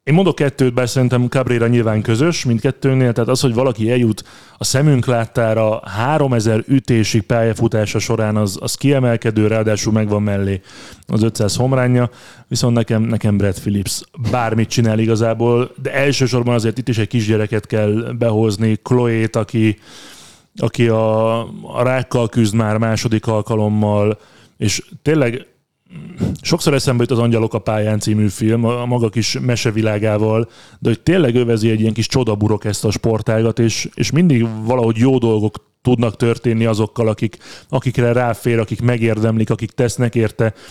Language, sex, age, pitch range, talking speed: Hungarian, male, 30-49, 110-120 Hz, 150 wpm